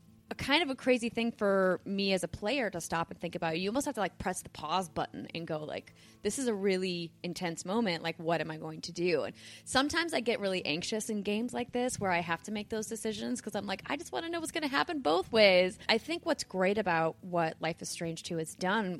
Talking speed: 265 wpm